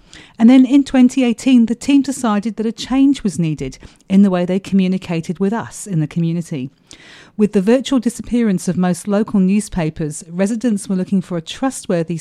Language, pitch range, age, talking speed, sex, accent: English, 170-220 Hz, 40-59, 175 wpm, female, British